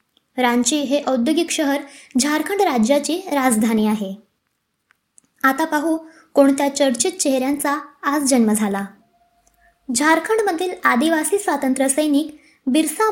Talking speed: 95 wpm